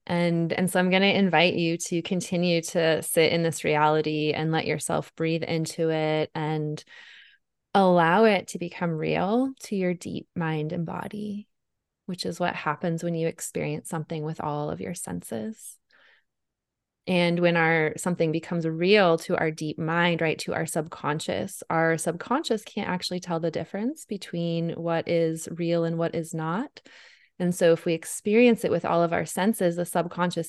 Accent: American